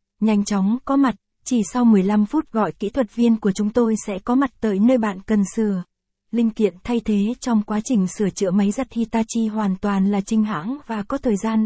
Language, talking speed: Vietnamese, 225 wpm